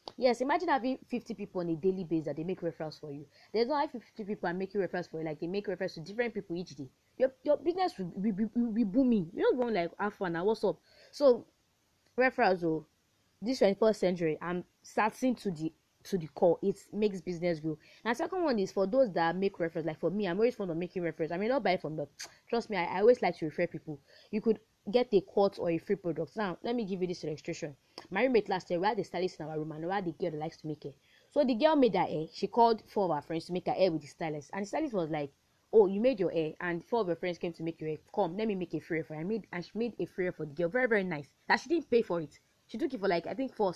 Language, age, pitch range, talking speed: English, 20-39, 165-235 Hz, 290 wpm